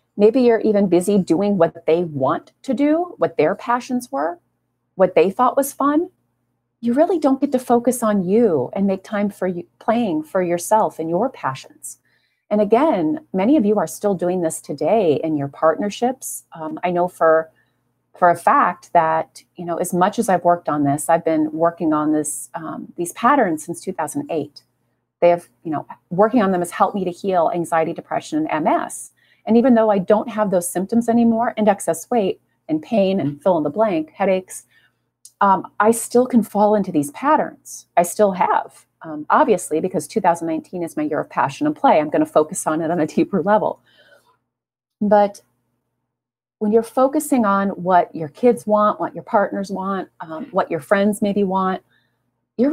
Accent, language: American, English